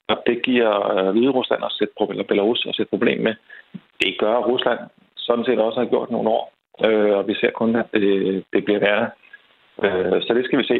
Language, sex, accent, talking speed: Danish, male, native, 205 wpm